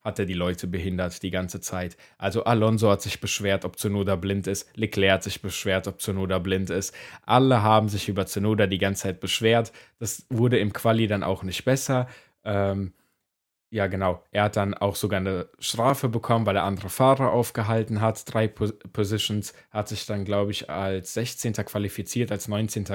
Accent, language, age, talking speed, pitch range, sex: German, German, 20-39, 185 wpm, 95-115 Hz, male